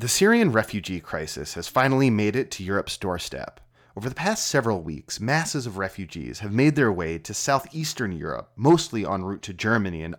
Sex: male